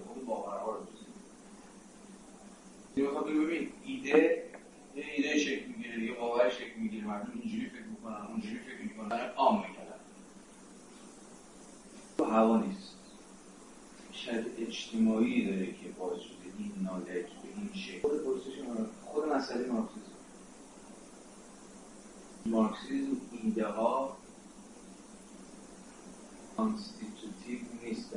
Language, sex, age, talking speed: Persian, male, 40-59, 80 wpm